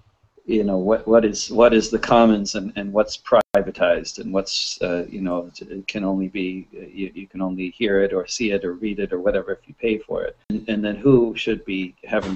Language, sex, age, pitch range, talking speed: English, male, 40-59, 100-115 Hz, 235 wpm